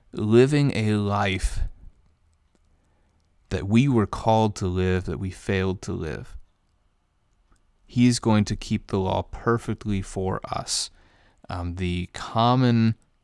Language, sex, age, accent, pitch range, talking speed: English, male, 30-49, American, 95-110 Hz, 120 wpm